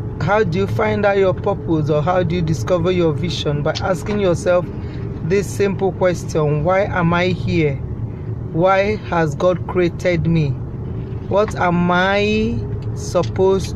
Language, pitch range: English, 120-185 Hz